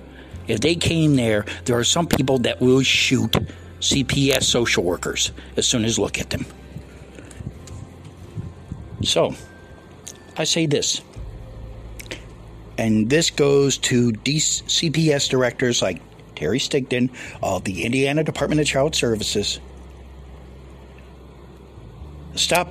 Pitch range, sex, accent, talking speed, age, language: 95-135 Hz, male, American, 110 wpm, 60-79, English